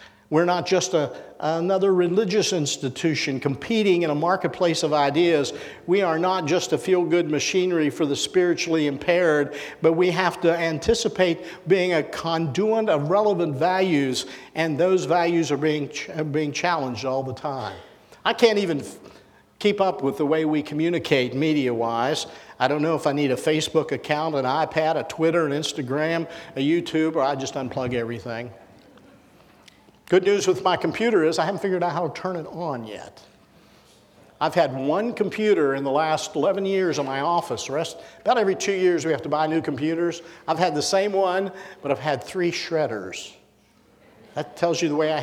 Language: English